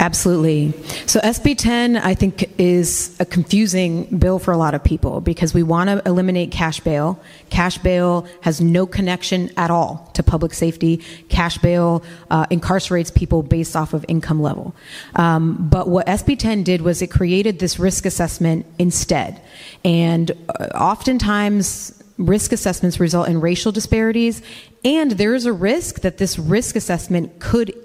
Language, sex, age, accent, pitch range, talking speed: English, female, 30-49, American, 165-200 Hz, 155 wpm